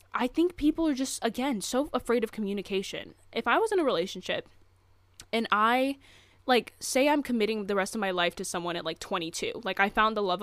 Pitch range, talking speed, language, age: 195-260 Hz, 215 wpm, English, 10-29